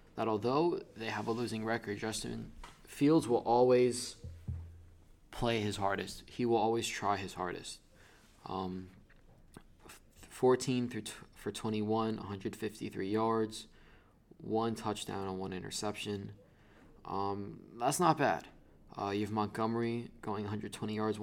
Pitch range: 100-115 Hz